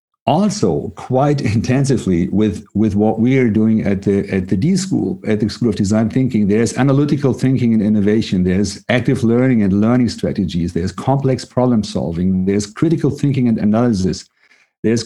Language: Hungarian